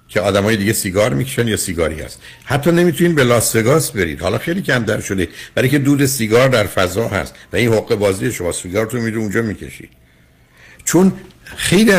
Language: Persian